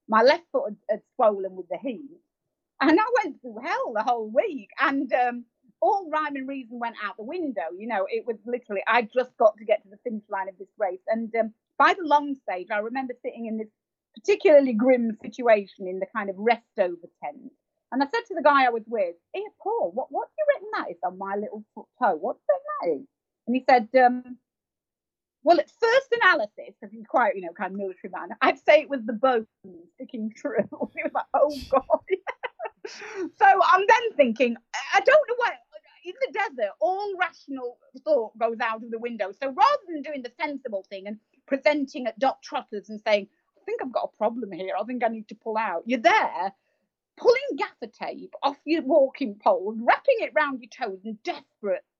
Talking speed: 210 wpm